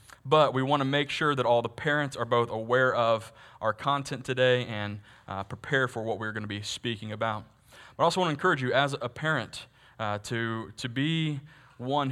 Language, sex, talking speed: English, male, 215 wpm